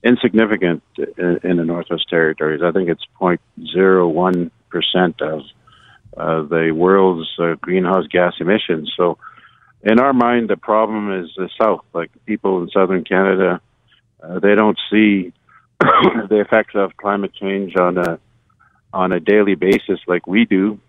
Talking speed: 145 wpm